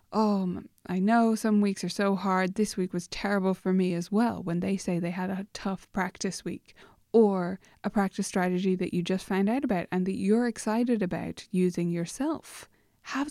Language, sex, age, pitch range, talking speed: English, female, 20-39, 185-225 Hz, 195 wpm